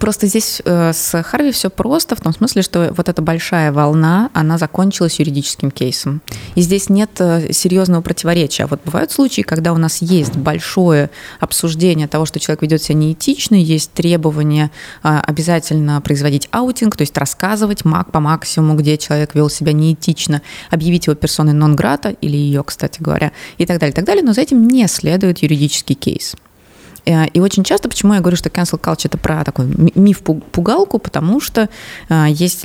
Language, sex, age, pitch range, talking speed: Russian, female, 20-39, 150-185 Hz, 165 wpm